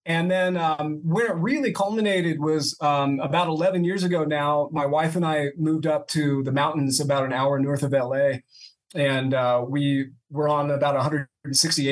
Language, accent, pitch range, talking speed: English, American, 135-165 Hz, 180 wpm